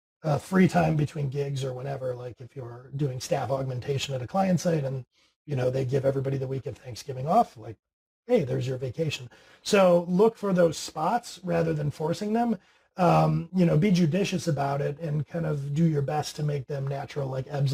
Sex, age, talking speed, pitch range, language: male, 30-49, 205 wpm, 135-170 Hz, English